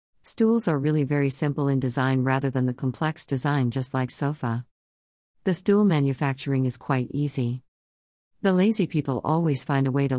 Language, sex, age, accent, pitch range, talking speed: English, female, 50-69, American, 130-160 Hz, 170 wpm